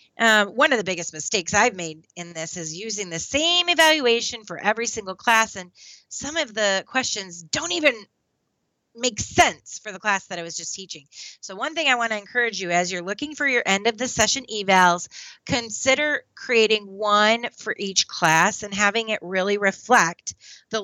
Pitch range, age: 190-265 Hz, 30-49